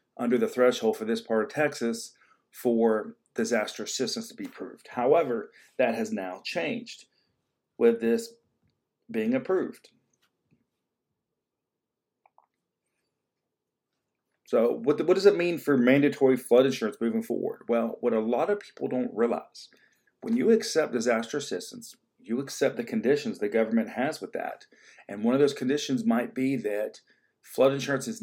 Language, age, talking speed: English, 40-59, 145 wpm